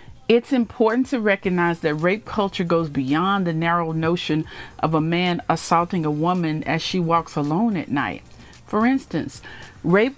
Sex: female